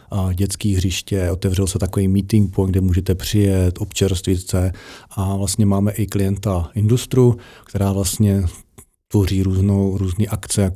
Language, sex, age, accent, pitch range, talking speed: Czech, male, 40-59, native, 95-105 Hz, 140 wpm